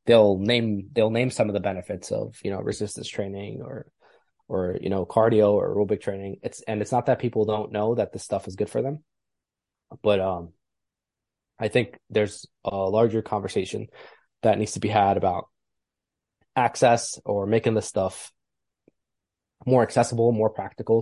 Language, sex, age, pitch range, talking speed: English, male, 20-39, 100-120 Hz, 170 wpm